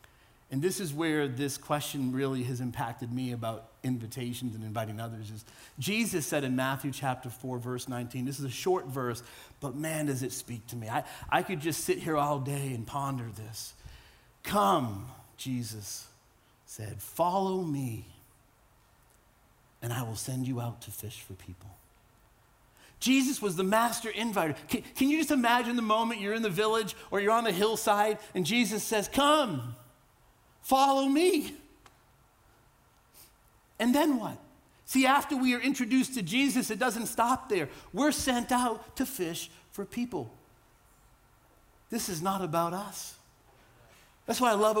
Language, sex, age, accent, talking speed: English, male, 40-59, American, 160 wpm